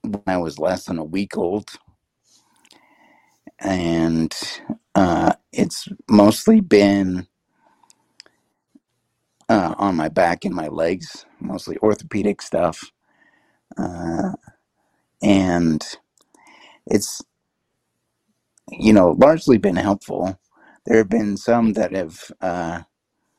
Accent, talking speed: American, 95 wpm